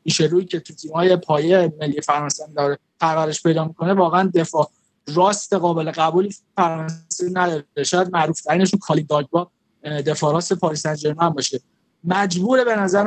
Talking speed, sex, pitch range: 140 wpm, male, 165-200 Hz